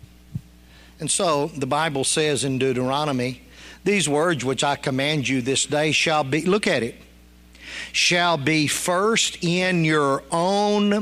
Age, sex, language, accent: 50-69, male, English, American